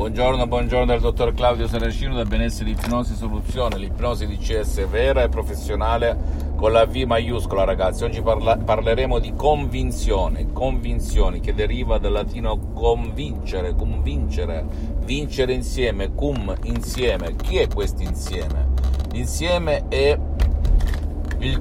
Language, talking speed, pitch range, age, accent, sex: Italian, 120 wpm, 75-110 Hz, 50-69, native, male